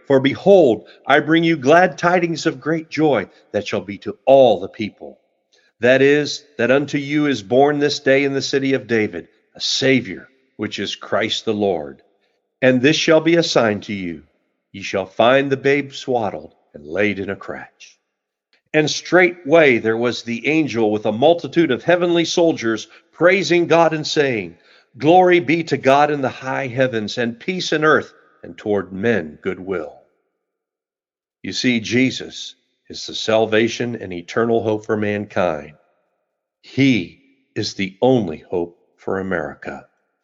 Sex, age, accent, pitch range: male, 50-69, American, 105-145 Hz